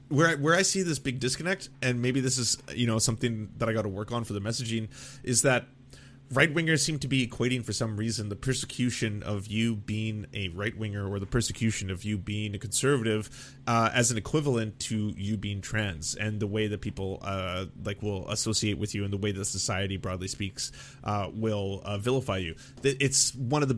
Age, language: 30-49, English